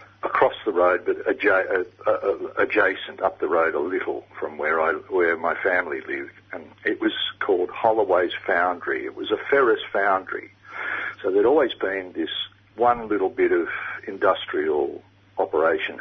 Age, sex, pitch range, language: 50-69, male, 355-430 Hz, English